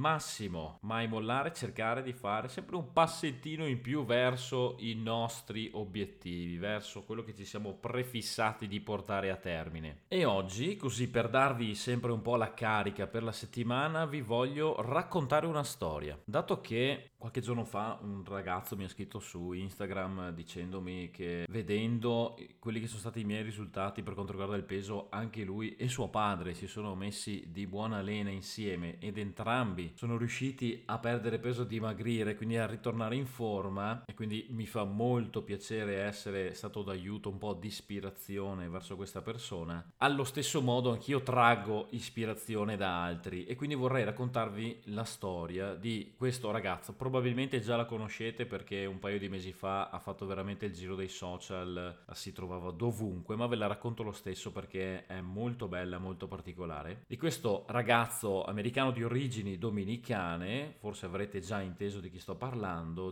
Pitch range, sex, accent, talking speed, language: 95-120 Hz, male, native, 170 wpm, Italian